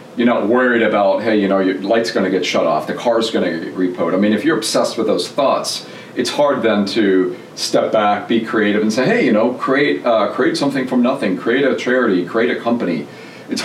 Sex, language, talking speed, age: male, English, 240 wpm, 40-59